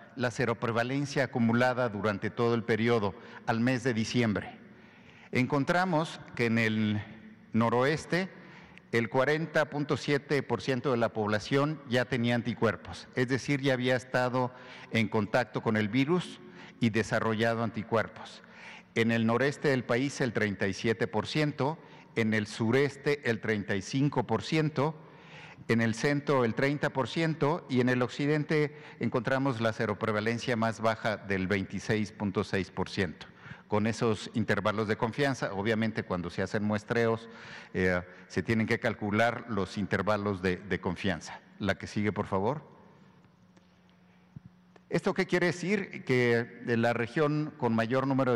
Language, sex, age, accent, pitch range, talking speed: Spanish, male, 50-69, Mexican, 110-135 Hz, 130 wpm